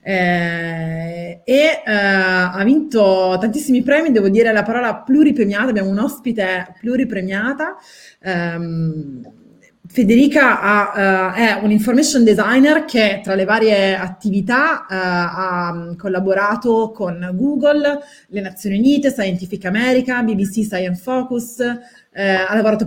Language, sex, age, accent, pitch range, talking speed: Italian, female, 30-49, native, 185-240 Hz, 115 wpm